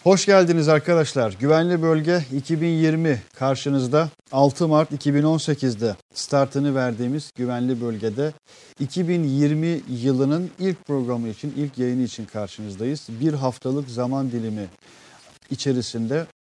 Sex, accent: male, native